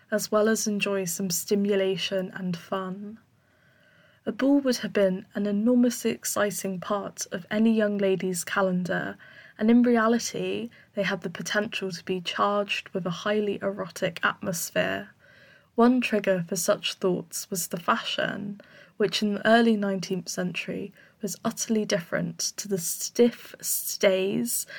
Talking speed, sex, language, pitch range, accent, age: 140 wpm, female, English, 190-220 Hz, British, 10-29